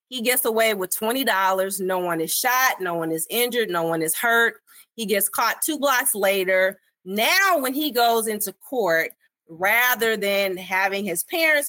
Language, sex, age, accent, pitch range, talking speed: English, female, 30-49, American, 170-220 Hz, 175 wpm